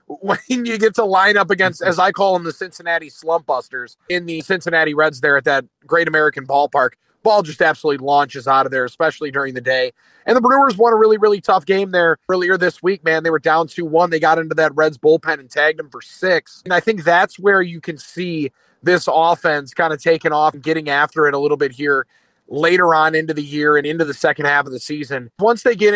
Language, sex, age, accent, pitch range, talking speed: English, male, 30-49, American, 150-190 Hz, 240 wpm